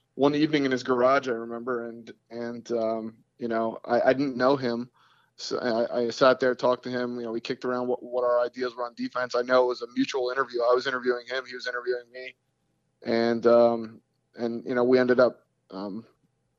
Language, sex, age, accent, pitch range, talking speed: English, male, 30-49, American, 120-135 Hz, 220 wpm